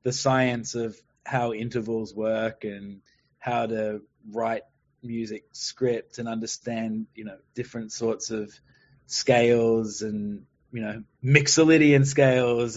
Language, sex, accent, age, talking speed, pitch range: English, male, Australian, 20-39, 115 wpm, 110-140 Hz